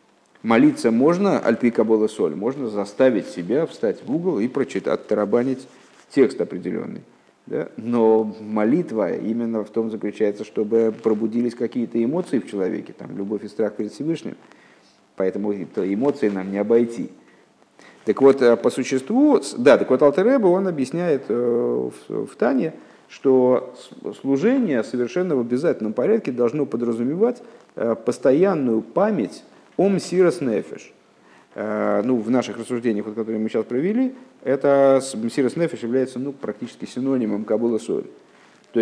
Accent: native